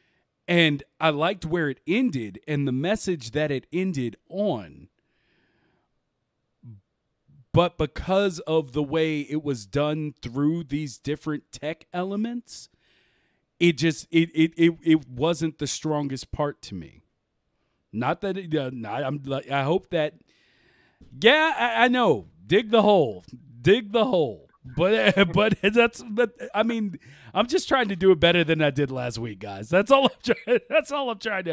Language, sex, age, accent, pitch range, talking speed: English, male, 40-59, American, 145-210 Hz, 160 wpm